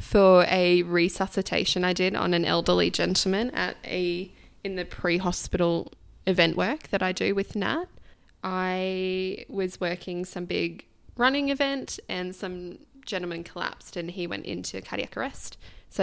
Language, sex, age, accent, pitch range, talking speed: English, female, 10-29, Australian, 175-200 Hz, 145 wpm